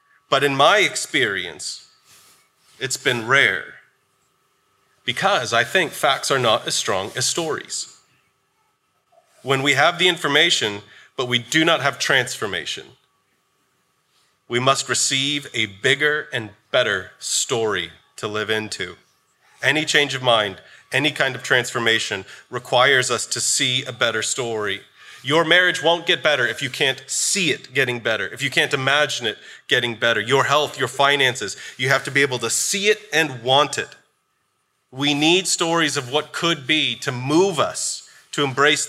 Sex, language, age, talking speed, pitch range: male, English, 30-49, 155 wpm, 130-180 Hz